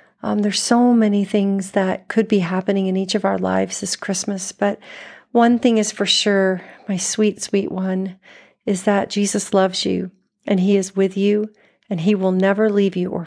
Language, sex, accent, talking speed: English, female, American, 195 wpm